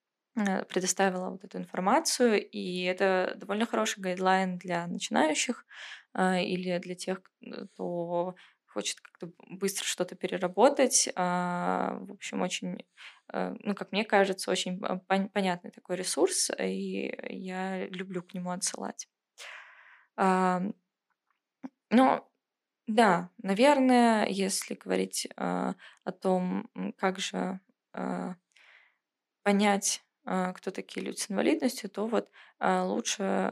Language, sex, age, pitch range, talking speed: Russian, female, 20-39, 180-215 Hz, 100 wpm